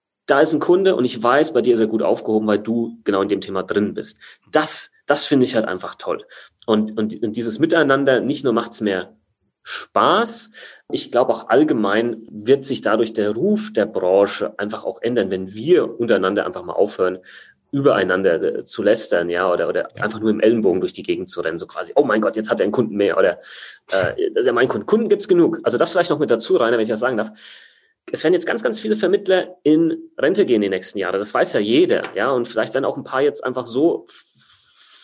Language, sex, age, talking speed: German, male, 30-49, 235 wpm